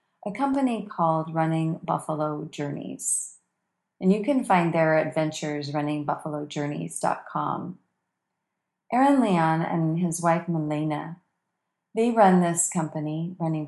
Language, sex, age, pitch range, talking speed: English, female, 40-59, 155-195 Hz, 105 wpm